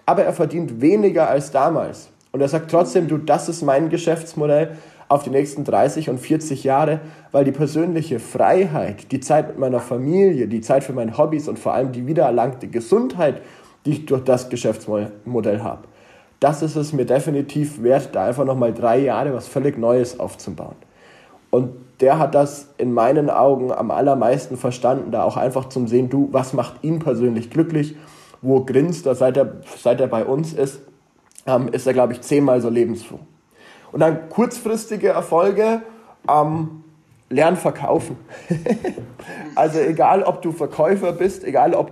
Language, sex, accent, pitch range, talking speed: German, male, German, 135-165 Hz, 165 wpm